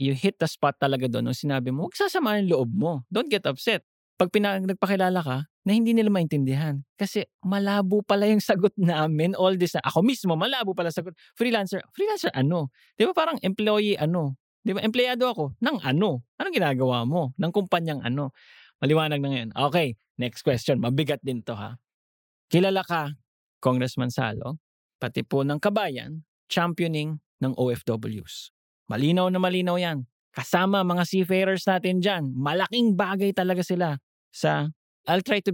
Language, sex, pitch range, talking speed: English, male, 130-185 Hz, 155 wpm